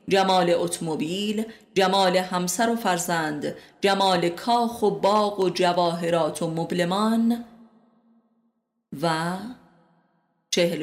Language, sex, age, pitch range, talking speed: Persian, female, 30-49, 170-205 Hz, 90 wpm